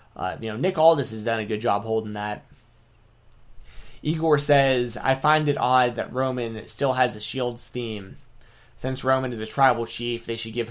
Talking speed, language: 190 wpm, English